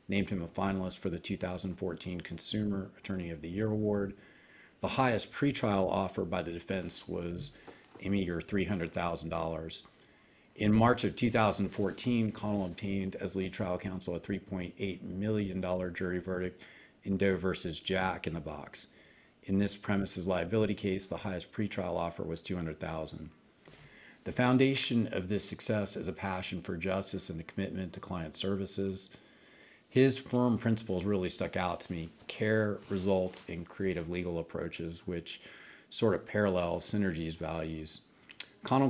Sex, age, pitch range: male, 50-69, 90-105 Hz